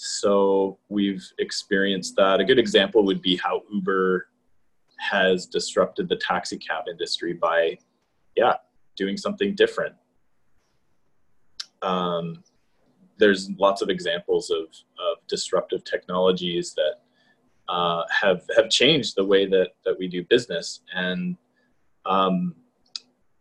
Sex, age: male, 20-39